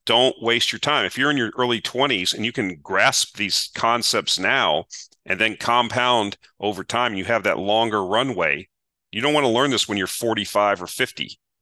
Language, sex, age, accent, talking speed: English, male, 40-59, American, 195 wpm